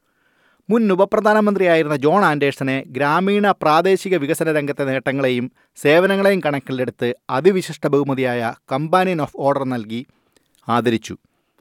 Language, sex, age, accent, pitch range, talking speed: Malayalam, male, 30-49, native, 130-175 Hz, 95 wpm